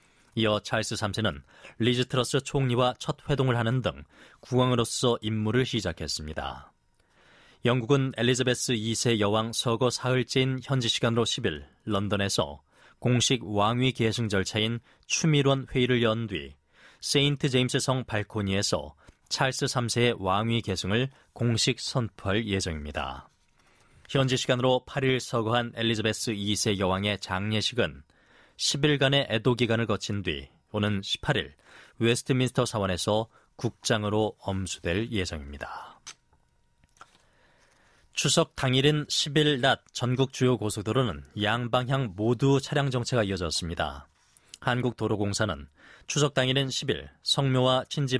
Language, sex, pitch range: Korean, male, 100-130 Hz